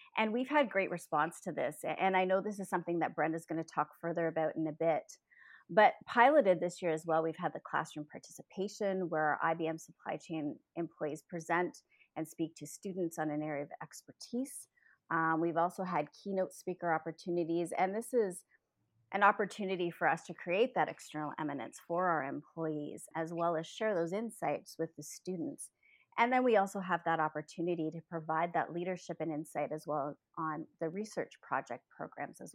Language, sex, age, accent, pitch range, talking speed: English, female, 30-49, American, 155-190 Hz, 190 wpm